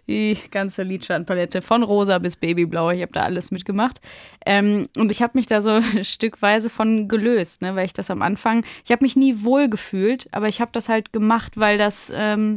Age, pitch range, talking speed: 20-39, 200-225 Hz, 205 wpm